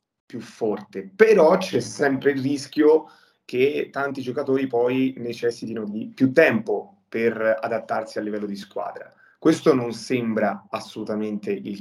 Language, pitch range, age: Italian, 115-145 Hz, 30-49